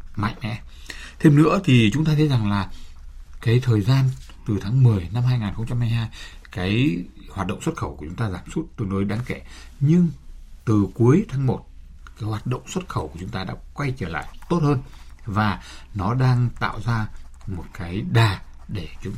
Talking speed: 190 wpm